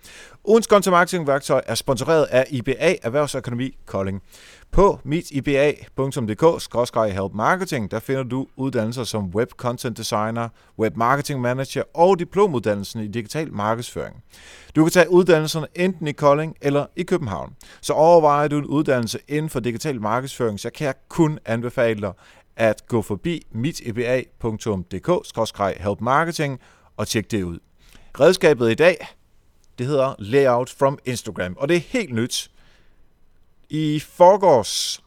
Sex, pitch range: male, 110-140 Hz